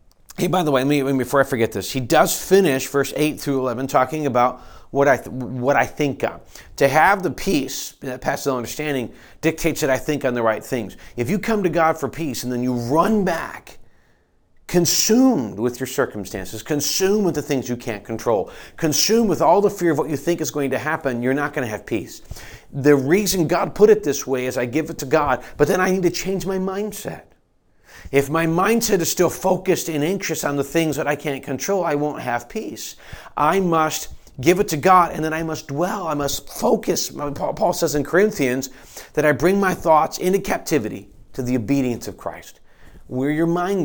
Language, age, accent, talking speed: English, 40-59, American, 210 wpm